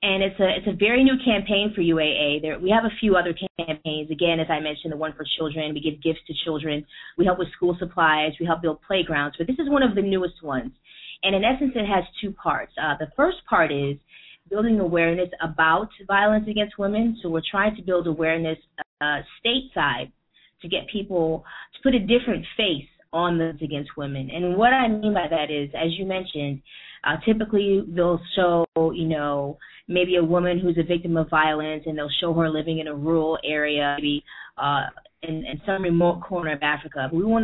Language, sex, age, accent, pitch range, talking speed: English, female, 20-39, American, 155-200 Hz, 205 wpm